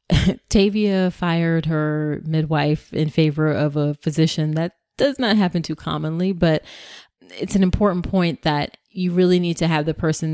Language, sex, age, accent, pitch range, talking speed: English, female, 30-49, American, 155-185 Hz, 165 wpm